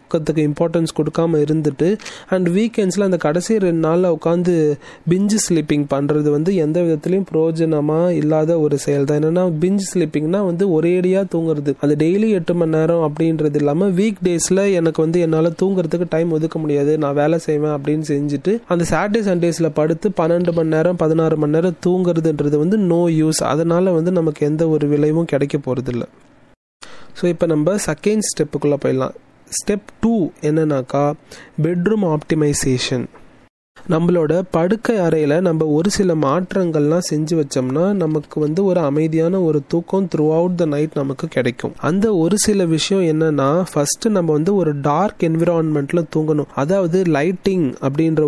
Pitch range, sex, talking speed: 150-180 Hz, male, 110 wpm